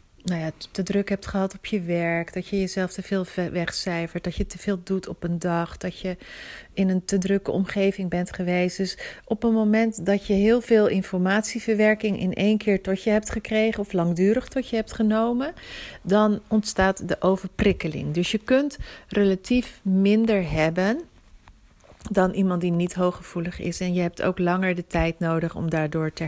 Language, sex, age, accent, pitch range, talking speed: Dutch, female, 40-59, Dutch, 175-205 Hz, 185 wpm